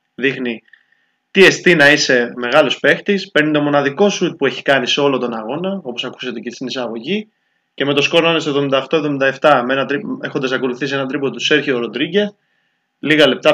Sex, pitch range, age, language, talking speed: male, 125-175 Hz, 20-39, Greek, 175 wpm